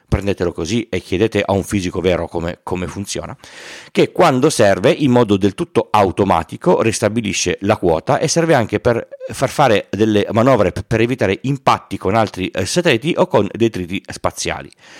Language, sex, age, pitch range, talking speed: Italian, male, 40-59, 100-140 Hz, 160 wpm